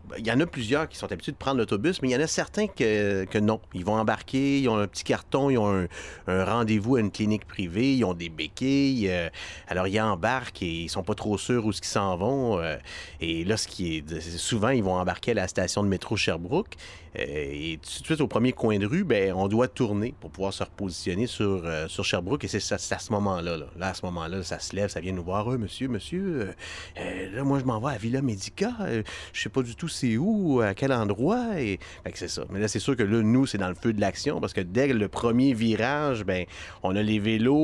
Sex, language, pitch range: male, French, 95-125 Hz